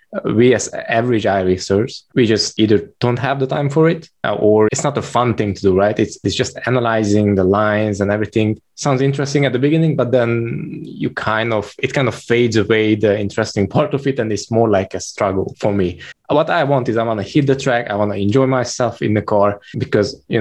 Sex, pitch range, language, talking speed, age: male, 105-130 Hz, English, 230 wpm, 20-39